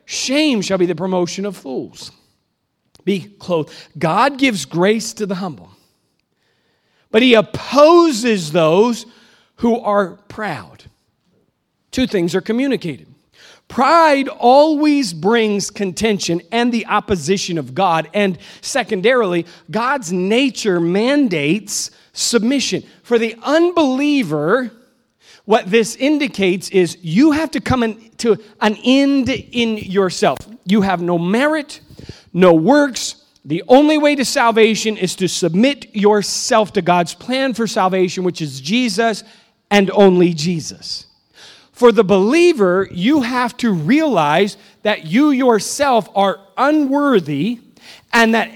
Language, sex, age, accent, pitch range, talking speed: English, male, 40-59, American, 190-250 Hz, 120 wpm